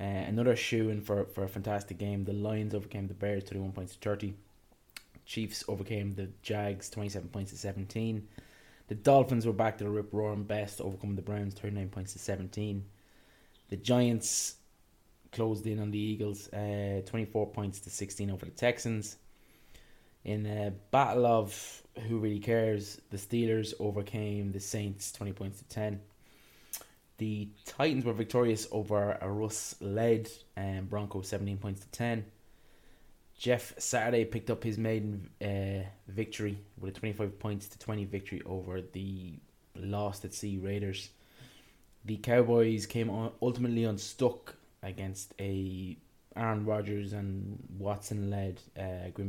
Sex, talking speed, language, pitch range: male, 140 wpm, English, 100-110 Hz